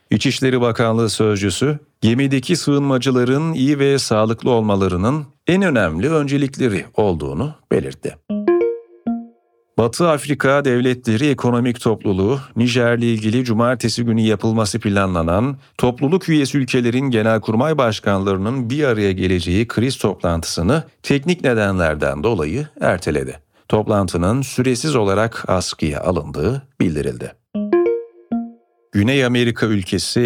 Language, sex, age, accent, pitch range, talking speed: Turkish, male, 40-59, native, 105-140 Hz, 95 wpm